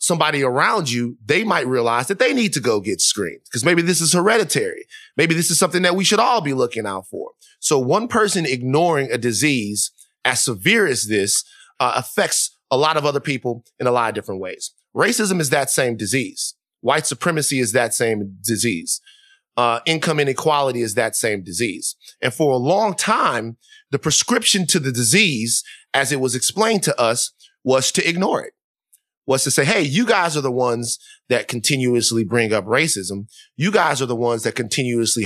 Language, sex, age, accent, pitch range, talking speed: English, male, 30-49, American, 125-200 Hz, 190 wpm